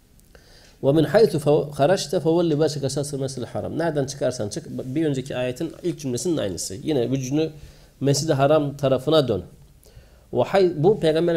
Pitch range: 125-155 Hz